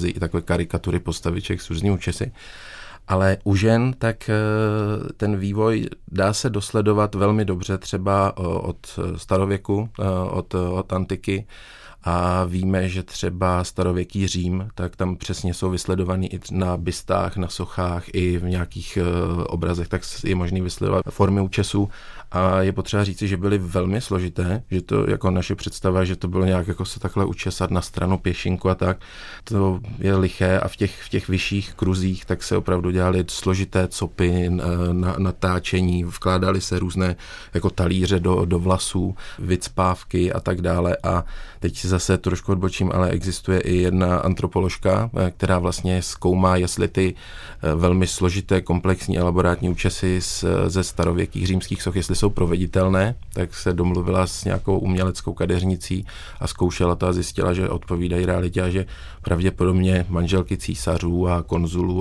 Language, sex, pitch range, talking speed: Czech, male, 90-95 Hz, 155 wpm